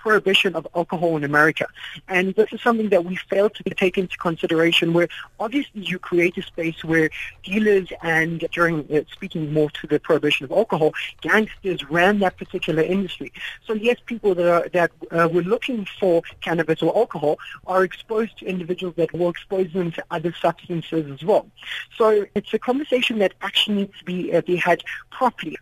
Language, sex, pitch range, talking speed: English, male, 170-210 Hz, 185 wpm